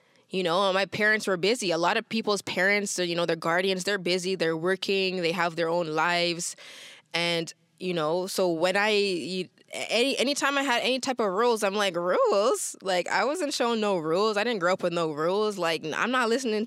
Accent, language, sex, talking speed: American, English, female, 210 wpm